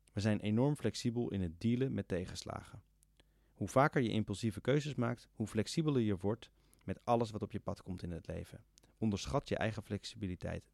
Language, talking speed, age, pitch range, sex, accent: Dutch, 185 wpm, 30-49, 90-120 Hz, male, Dutch